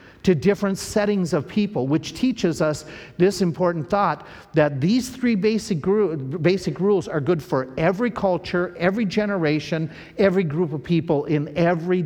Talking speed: 150 wpm